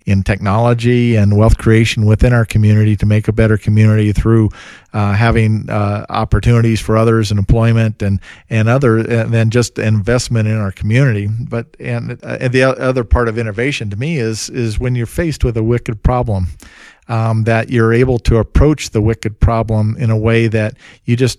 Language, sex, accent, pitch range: English, male, American, 105-120 Hz